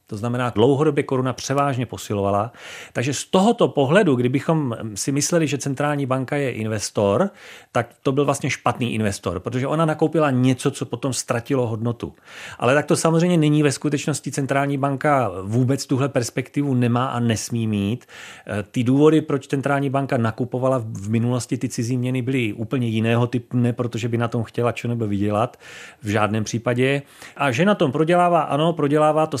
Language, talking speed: Czech, 165 wpm